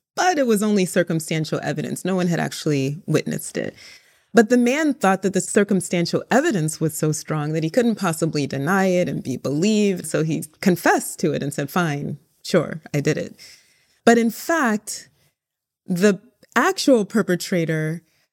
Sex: female